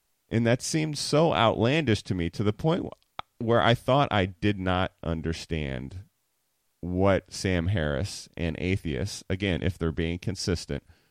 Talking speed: 145 wpm